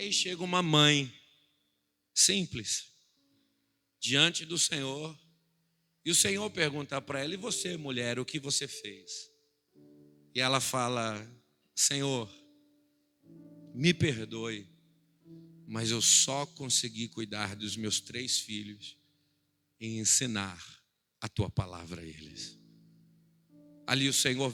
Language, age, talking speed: Portuguese, 50-69, 110 wpm